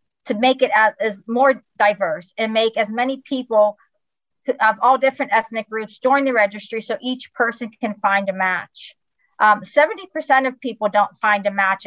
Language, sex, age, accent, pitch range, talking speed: English, female, 40-59, American, 210-255 Hz, 175 wpm